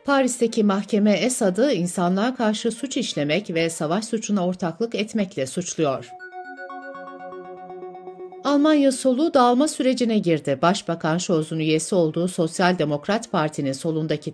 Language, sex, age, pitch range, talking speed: Turkish, female, 60-79, 155-220 Hz, 110 wpm